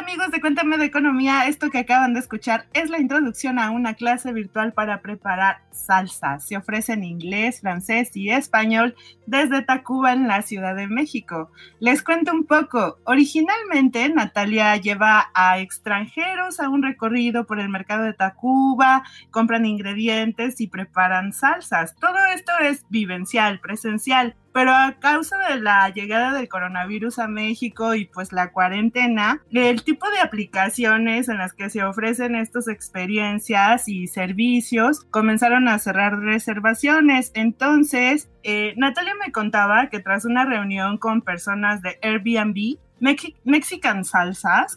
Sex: female